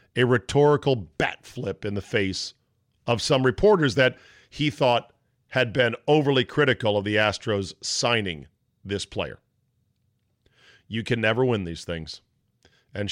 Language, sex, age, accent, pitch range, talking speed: English, male, 40-59, American, 100-135 Hz, 135 wpm